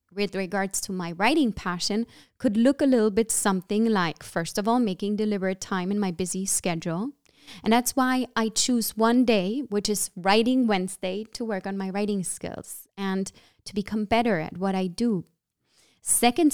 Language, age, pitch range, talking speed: German, 20-39, 190-230 Hz, 180 wpm